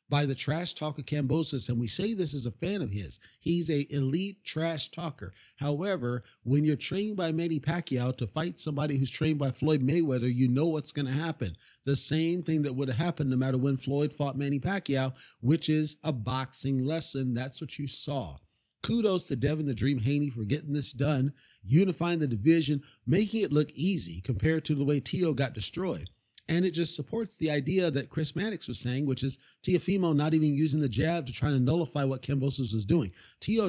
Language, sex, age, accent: English, male, 40-59, American